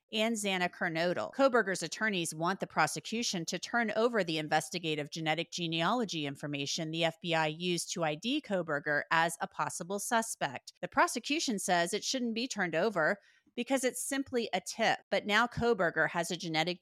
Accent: American